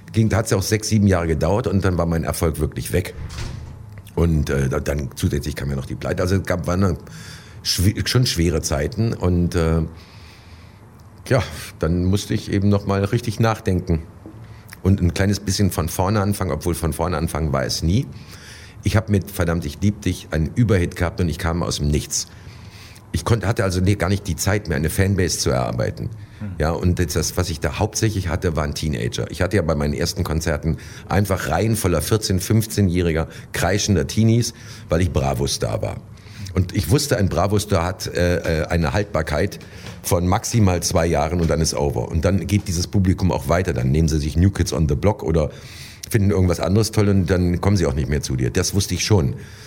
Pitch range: 85-105 Hz